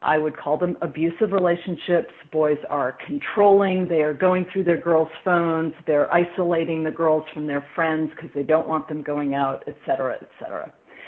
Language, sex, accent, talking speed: English, female, American, 185 wpm